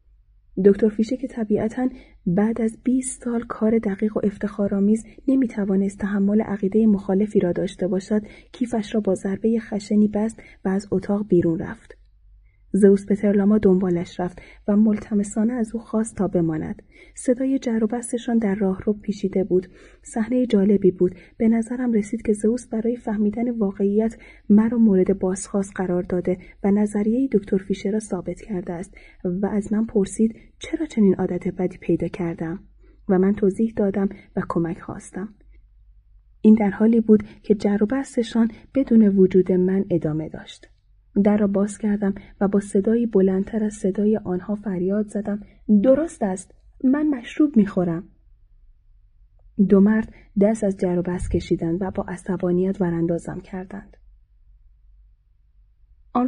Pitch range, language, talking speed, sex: 185-220 Hz, Persian, 140 wpm, female